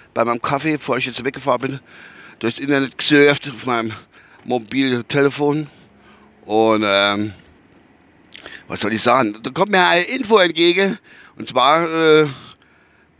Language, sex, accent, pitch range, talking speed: German, male, German, 110-145 Hz, 130 wpm